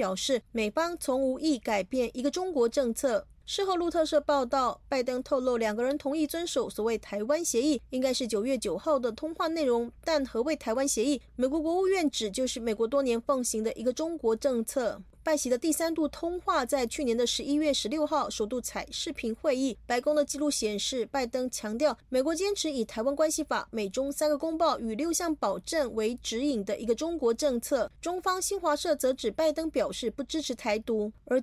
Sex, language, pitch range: female, Chinese, 240-300 Hz